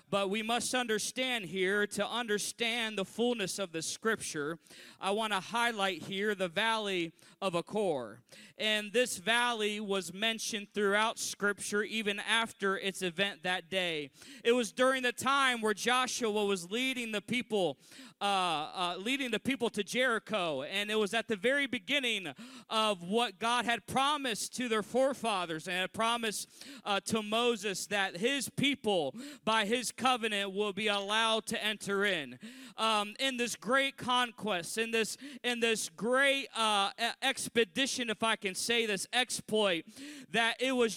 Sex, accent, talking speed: male, American, 155 wpm